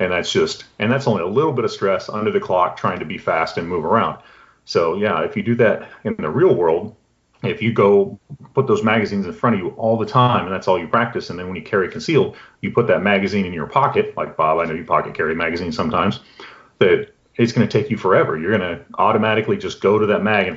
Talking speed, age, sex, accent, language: 255 wpm, 30-49, male, American, English